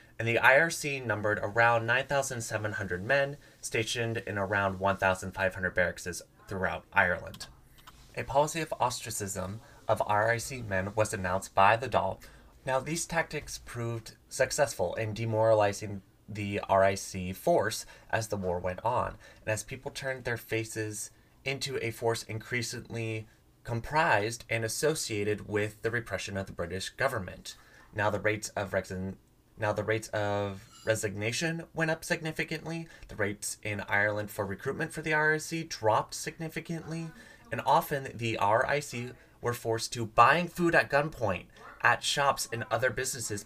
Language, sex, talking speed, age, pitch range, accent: English, male, 140 wpm, 20-39, 105-135 Hz, American